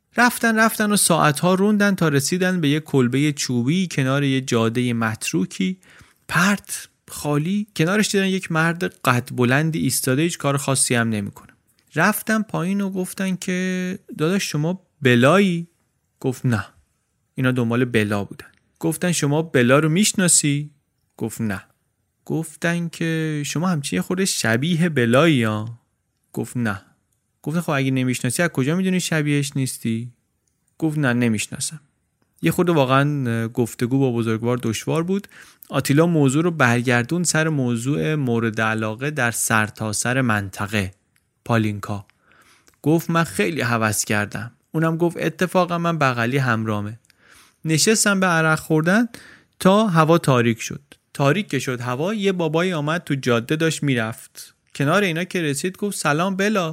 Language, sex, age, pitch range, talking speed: Persian, male, 30-49, 120-170 Hz, 135 wpm